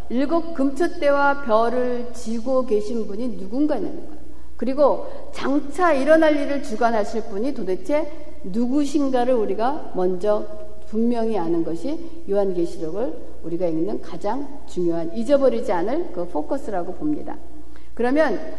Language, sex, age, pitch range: Korean, female, 60-79, 210-300 Hz